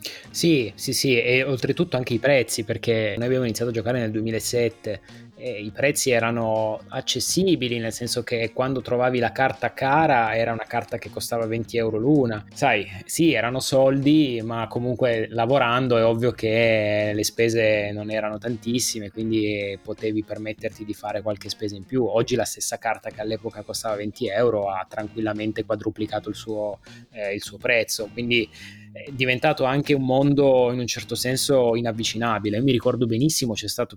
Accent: native